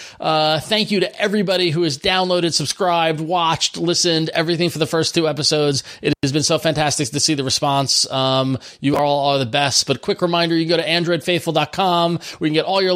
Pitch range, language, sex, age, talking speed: 135-170 Hz, English, male, 30-49, 215 wpm